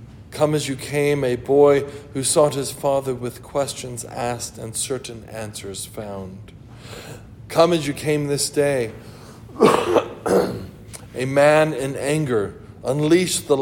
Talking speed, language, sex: 130 wpm, English, male